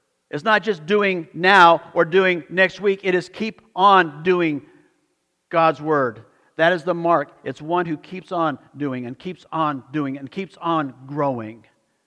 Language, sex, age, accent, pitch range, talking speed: English, male, 50-69, American, 110-160 Hz, 170 wpm